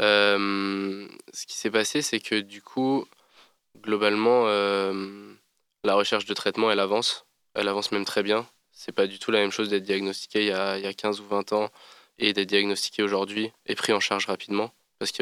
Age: 20-39